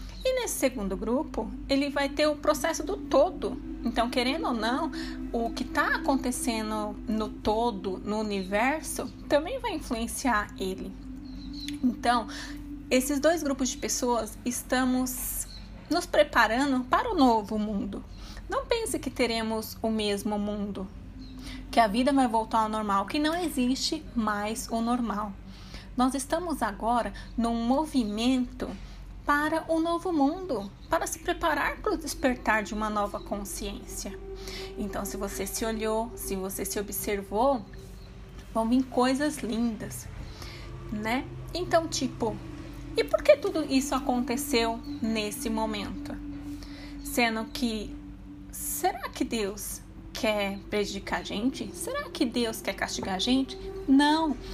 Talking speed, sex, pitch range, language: 130 wpm, female, 220-295 Hz, Portuguese